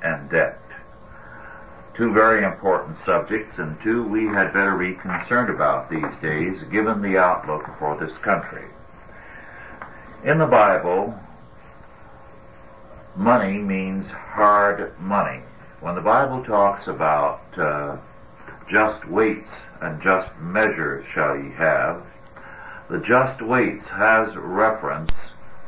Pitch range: 80-110 Hz